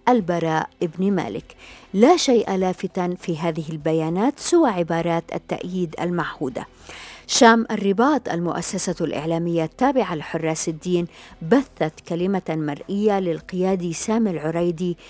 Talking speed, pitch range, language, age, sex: 105 wpm, 170-200 Hz, Arabic, 50-69, female